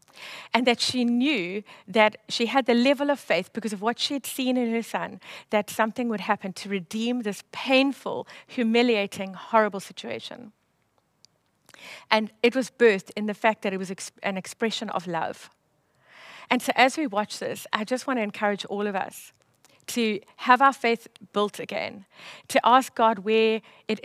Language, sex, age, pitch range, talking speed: English, female, 50-69, 195-235 Hz, 175 wpm